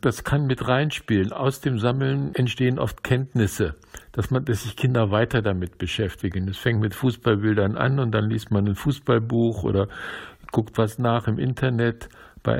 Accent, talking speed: German, 165 wpm